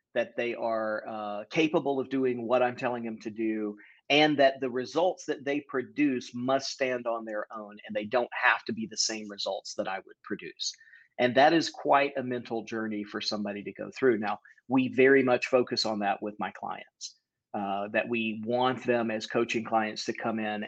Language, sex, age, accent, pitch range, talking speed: English, male, 40-59, American, 110-130 Hz, 205 wpm